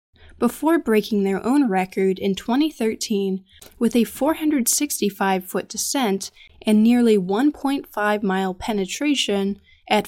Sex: female